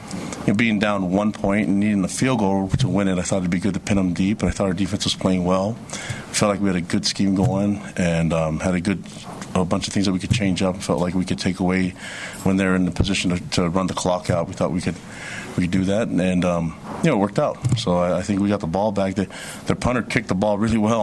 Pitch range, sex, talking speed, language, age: 90-100 Hz, male, 295 wpm, English, 40-59